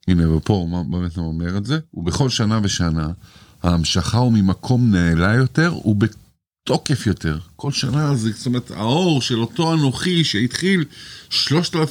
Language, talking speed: Hebrew, 140 wpm